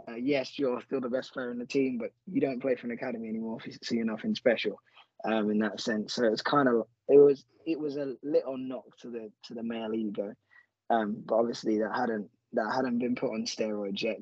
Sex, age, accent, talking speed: male, 20-39, British, 235 wpm